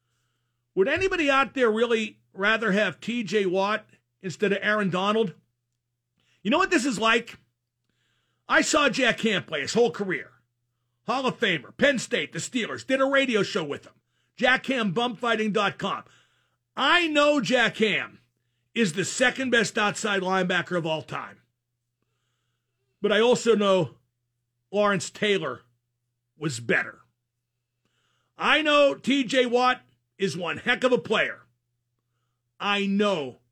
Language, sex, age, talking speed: English, male, 50-69, 130 wpm